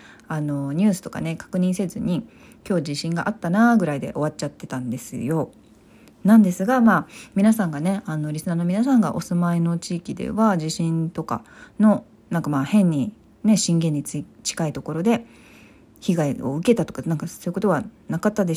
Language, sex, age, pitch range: Japanese, female, 40-59, 150-195 Hz